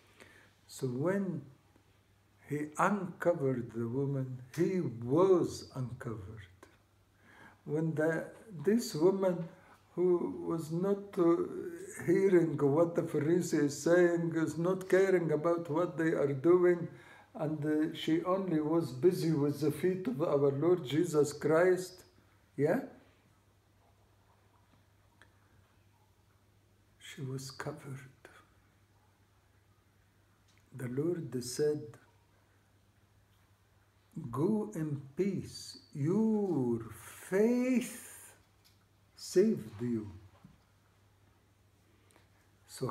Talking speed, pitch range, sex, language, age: 80 wpm, 100-160 Hz, male, English, 60-79